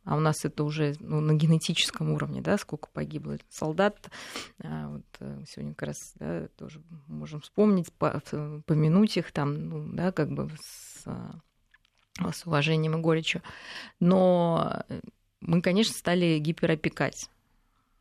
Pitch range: 155-205 Hz